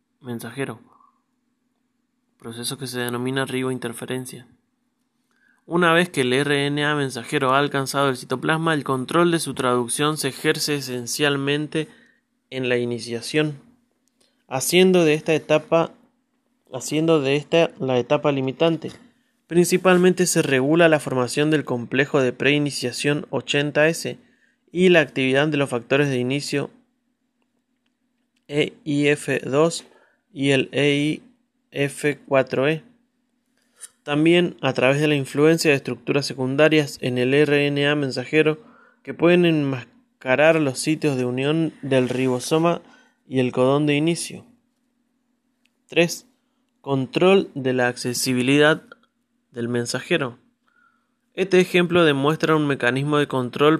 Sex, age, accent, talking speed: male, 20-39, Argentinian, 110 wpm